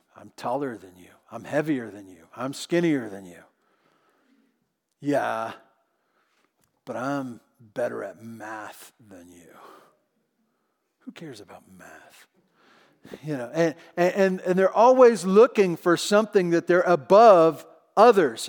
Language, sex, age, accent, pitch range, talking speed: English, male, 40-59, American, 150-210 Hz, 125 wpm